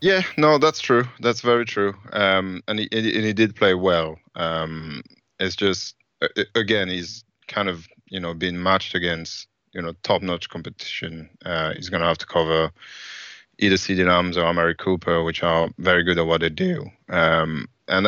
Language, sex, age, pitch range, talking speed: English, male, 20-39, 85-110 Hz, 180 wpm